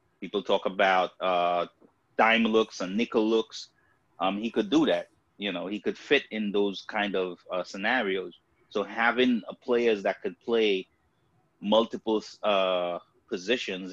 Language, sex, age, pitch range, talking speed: English, male, 30-49, 95-110 Hz, 150 wpm